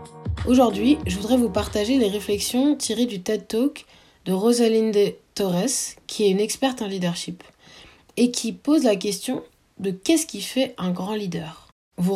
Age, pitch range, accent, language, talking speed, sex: 20-39, 180-240 Hz, French, French, 165 wpm, female